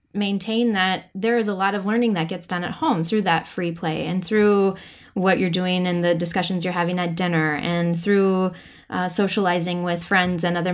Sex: female